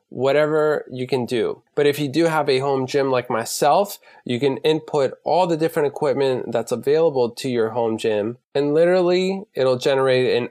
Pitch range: 130-170 Hz